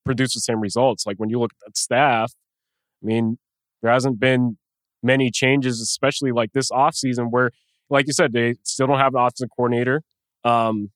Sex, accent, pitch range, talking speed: male, American, 120-135 Hz, 180 wpm